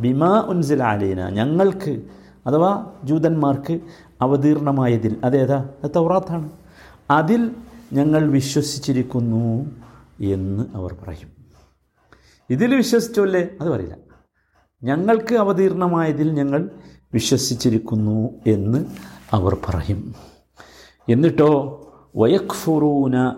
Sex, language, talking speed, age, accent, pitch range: male, Malayalam, 65 wpm, 50-69, native, 110-180 Hz